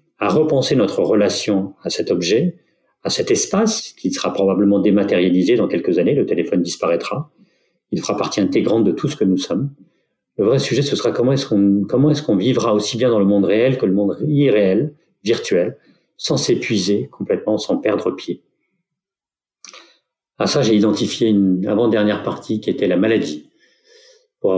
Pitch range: 95-120 Hz